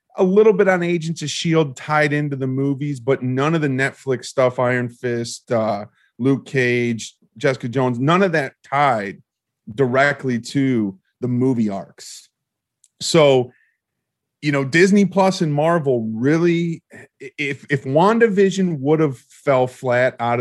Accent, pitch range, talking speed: American, 125-160 Hz, 145 wpm